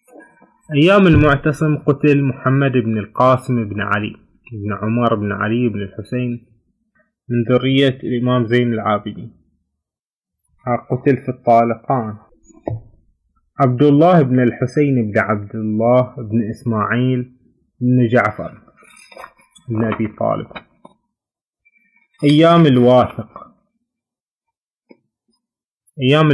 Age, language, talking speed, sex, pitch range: 20-39, Arabic, 90 wpm, male, 110-140 Hz